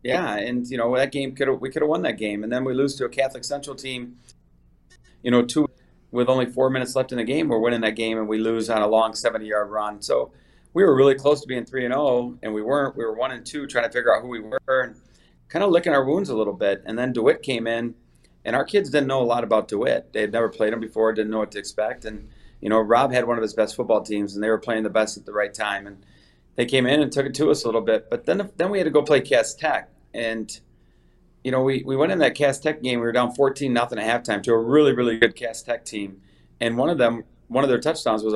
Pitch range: 110-135 Hz